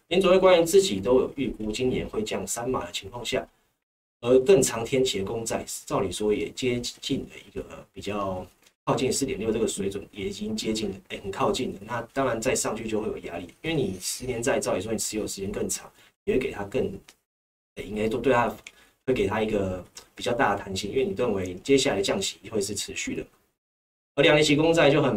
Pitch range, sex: 100-135 Hz, male